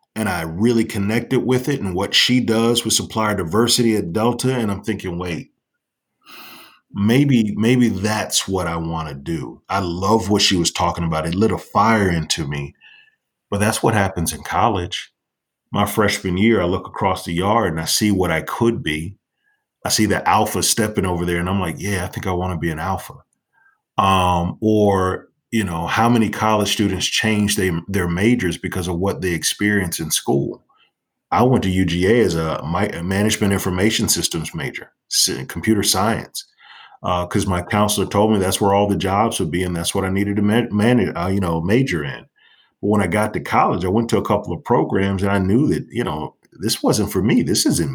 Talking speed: 200 wpm